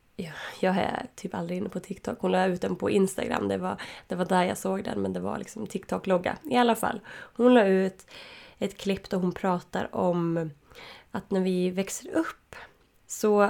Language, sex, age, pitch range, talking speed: Swedish, female, 20-39, 185-235 Hz, 190 wpm